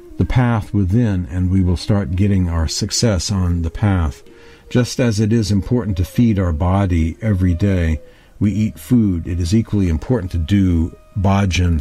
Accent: American